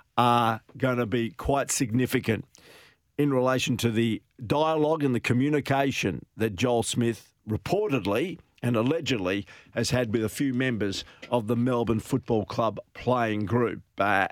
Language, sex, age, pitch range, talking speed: English, male, 50-69, 110-130 Hz, 145 wpm